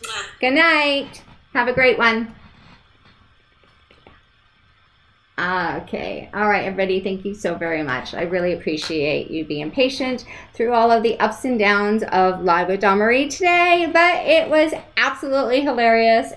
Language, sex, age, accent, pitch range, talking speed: English, female, 30-49, American, 155-230 Hz, 130 wpm